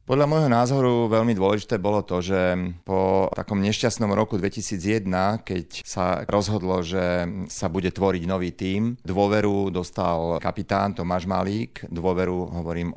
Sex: male